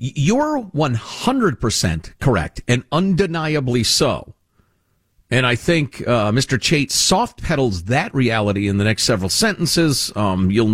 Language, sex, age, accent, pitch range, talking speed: English, male, 50-69, American, 120-185 Hz, 125 wpm